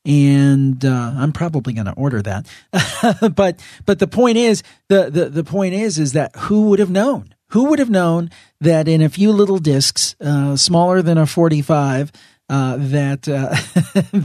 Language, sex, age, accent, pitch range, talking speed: English, male, 40-59, American, 140-175 Hz, 175 wpm